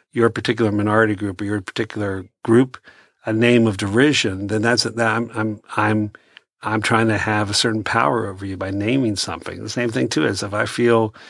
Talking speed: 200 wpm